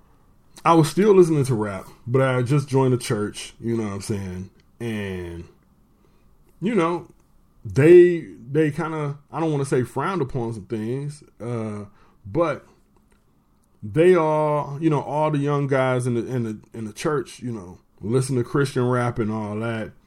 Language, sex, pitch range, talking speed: English, male, 115-160 Hz, 175 wpm